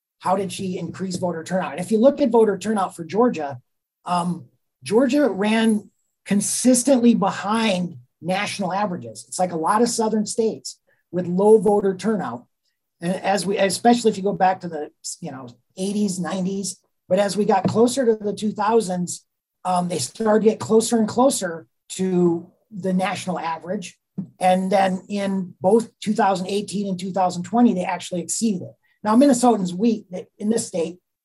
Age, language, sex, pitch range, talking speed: 40-59, English, male, 170-215 Hz, 160 wpm